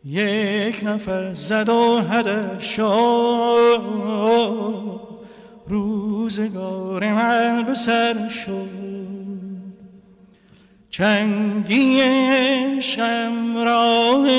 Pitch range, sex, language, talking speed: 175-205 Hz, male, Persian, 45 wpm